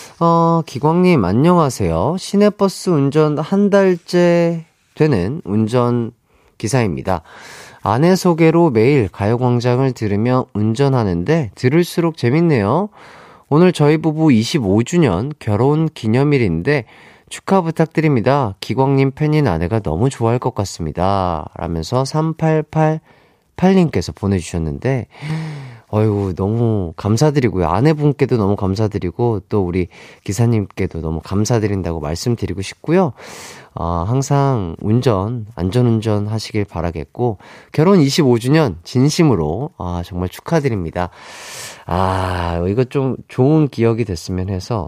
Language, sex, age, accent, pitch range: Korean, male, 30-49, native, 95-155 Hz